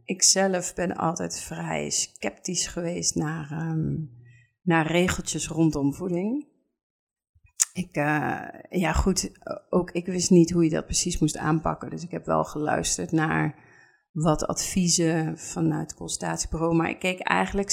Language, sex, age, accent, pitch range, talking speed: Dutch, female, 40-59, Dutch, 155-185 Hz, 140 wpm